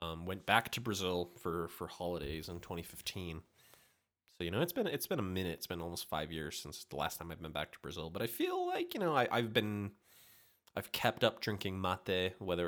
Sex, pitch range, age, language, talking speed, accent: male, 85-105 Hz, 20-39, English, 225 wpm, American